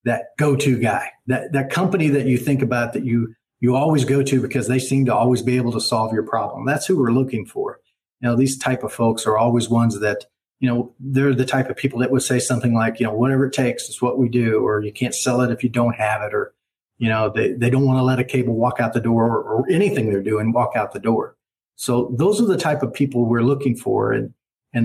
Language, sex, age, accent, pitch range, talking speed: English, male, 40-59, American, 120-135 Hz, 265 wpm